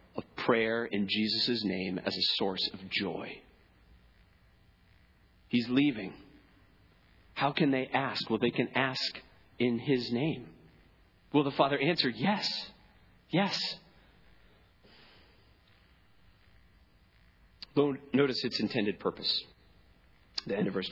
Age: 40-59